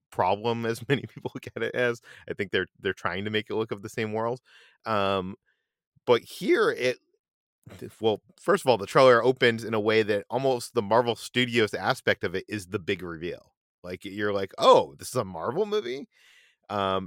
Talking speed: 200 wpm